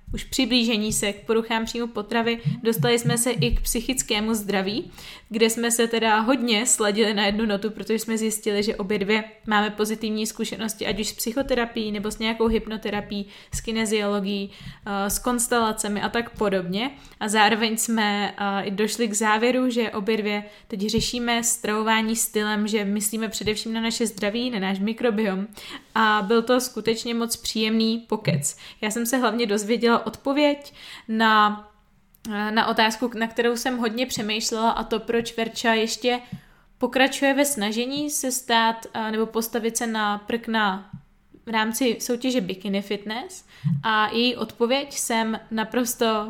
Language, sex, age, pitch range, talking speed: Czech, female, 20-39, 210-235 Hz, 150 wpm